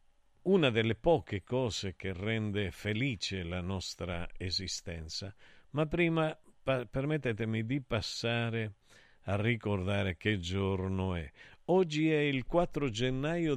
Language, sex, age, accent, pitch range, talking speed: Italian, male, 50-69, native, 100-135 Hz, 115 wpm